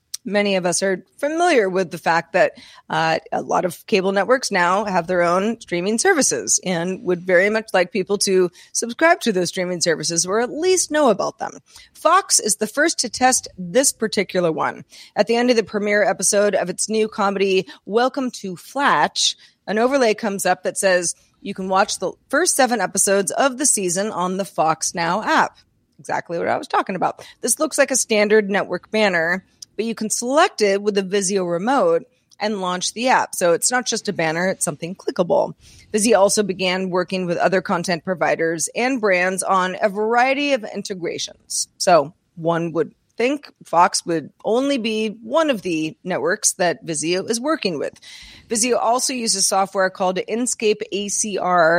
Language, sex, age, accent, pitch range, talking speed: English, female, 30-49, American, 180-230 Hz, 180 wpm